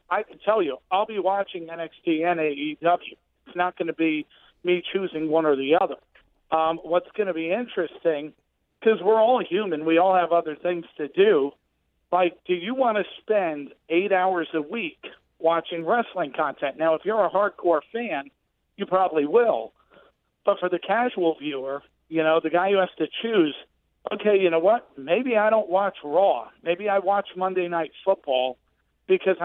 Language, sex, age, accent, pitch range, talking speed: English, male, 50-69, American, 165-190 Hz, 180 wpm